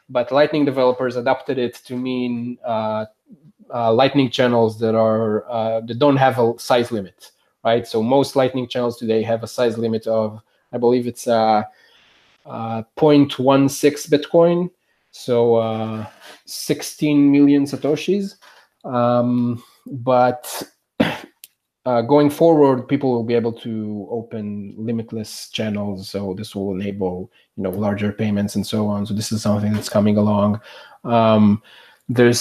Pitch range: 110-130 Hz